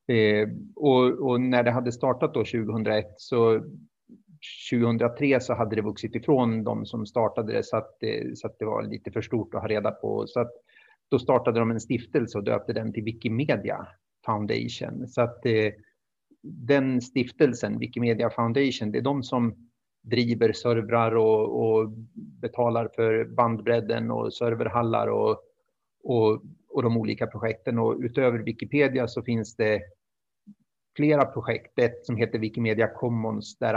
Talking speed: 145 wpm